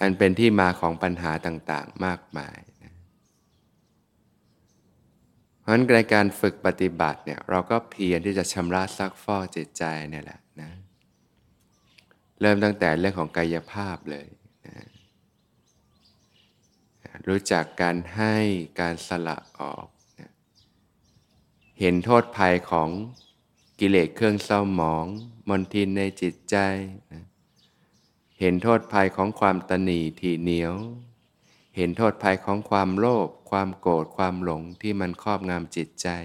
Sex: male